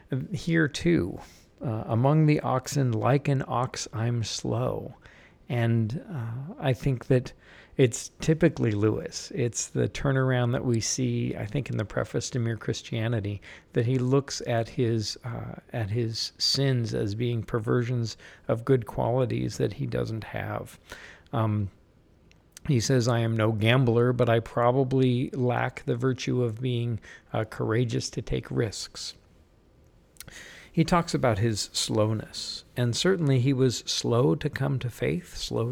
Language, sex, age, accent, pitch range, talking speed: English, male, 50-69, American, 110-130 Hz, 145 wpm